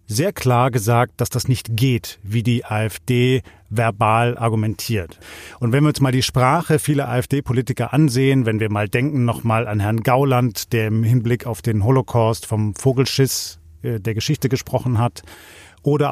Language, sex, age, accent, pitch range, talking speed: German, male, 40-59, German, 115-135 Hz, 160 wpm